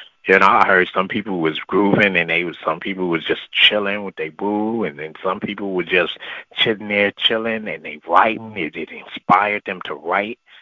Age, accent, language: 30-49, American, English